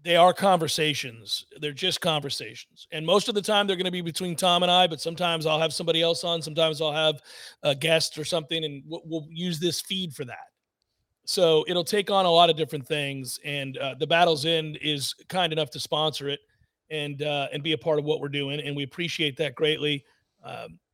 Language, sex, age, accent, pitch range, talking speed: English, male, 40-59, American, 145-175 Hz, 220 wpm